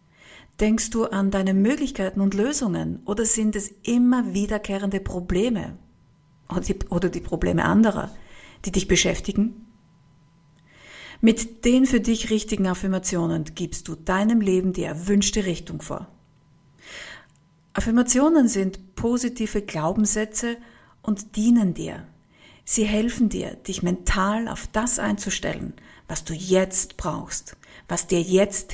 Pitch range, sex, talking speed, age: 180-220 Hz, female, 115 wpm, 50-69